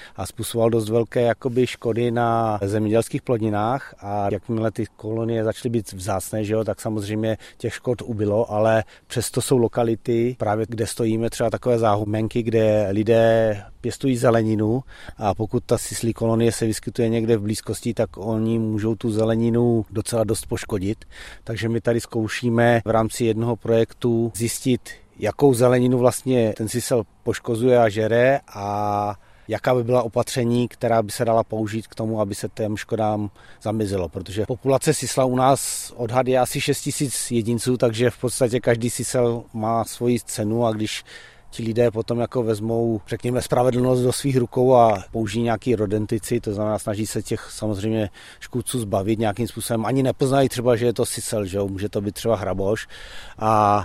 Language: Czech